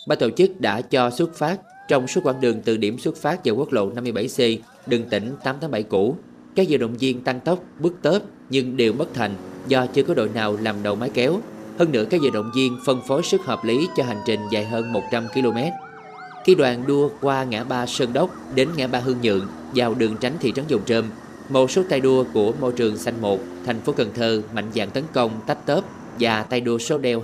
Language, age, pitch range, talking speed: Vietnamese, 20-39, 115-140 Hz, 235 wpm